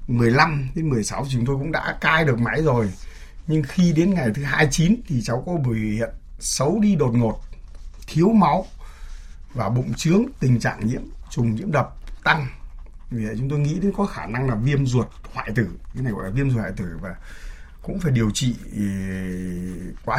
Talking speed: 195 wpm